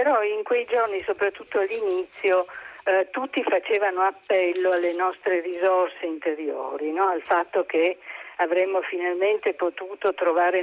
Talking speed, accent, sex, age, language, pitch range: 125 wpm, native, female, 50-69, Italian, 175-245 Hz